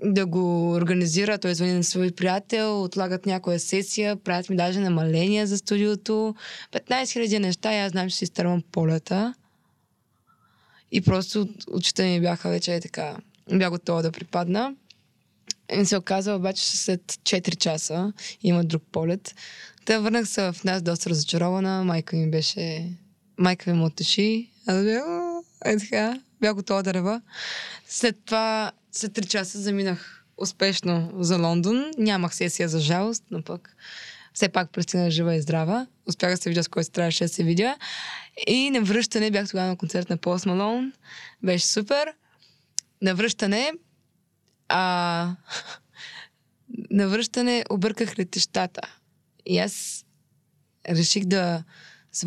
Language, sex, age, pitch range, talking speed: Bulgarian, female, 20-39, 175-210 Hz, 135 wpm